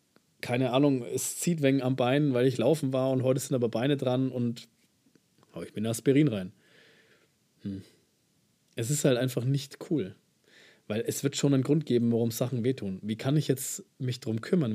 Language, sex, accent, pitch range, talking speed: German, male, German, 115-145 Hz, 195 wpm